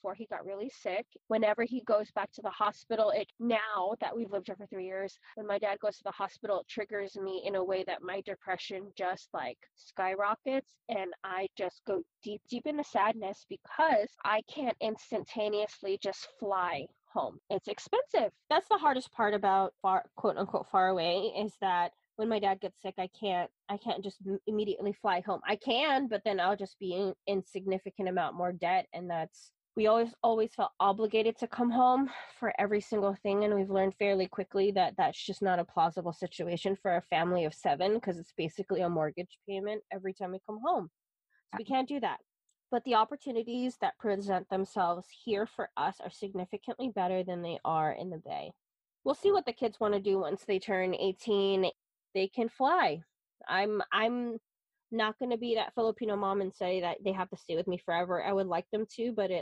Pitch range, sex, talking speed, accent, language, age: 190-225 Hz, female, 200 wpm, American, English, 20-39